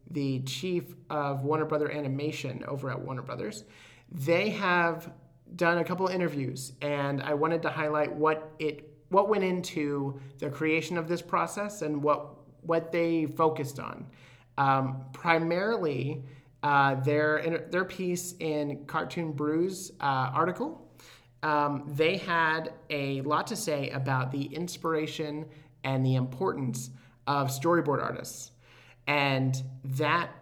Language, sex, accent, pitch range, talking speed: English, male, American, 130-160 Hz, 130 wpm